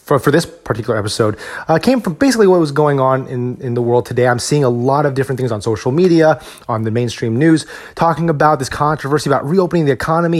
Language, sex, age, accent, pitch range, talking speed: English, male, 30-49, American, 120-155 Hz, 230 wpm